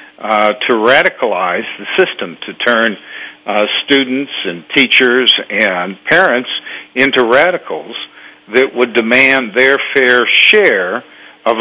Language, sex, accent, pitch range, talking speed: English, male, American, 110-130 Hz, 115 wpm